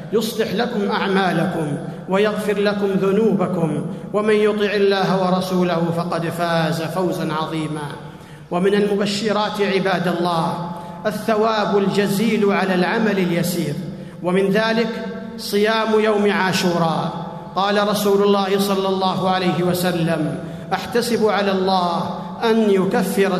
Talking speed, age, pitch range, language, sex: 105 wpm, 50-69, 175-205 Hz, Arabic, male